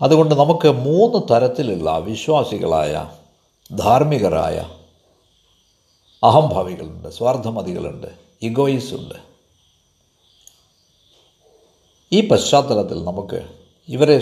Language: Malayalam